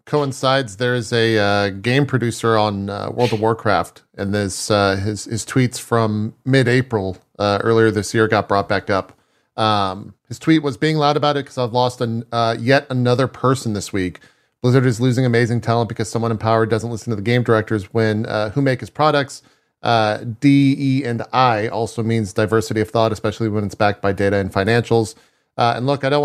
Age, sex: 40-59, male